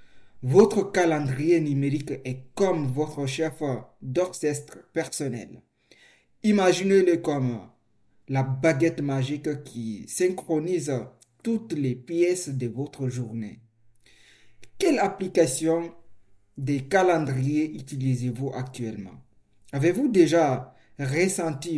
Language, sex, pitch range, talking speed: French, male, 125-165 Hz, 85 wpm